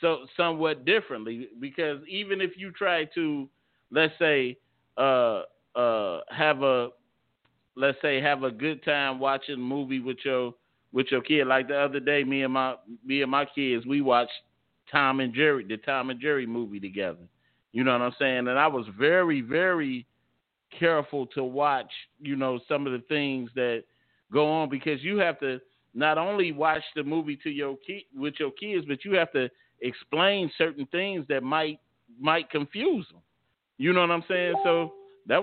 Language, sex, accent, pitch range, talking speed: English, male, American, 130-165 Hz, 180 wpm